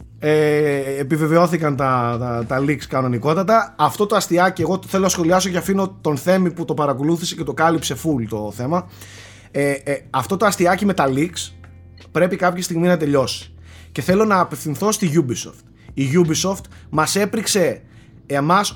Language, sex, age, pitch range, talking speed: Greek, male, 30-49, 130-185 Hz, 165 wpm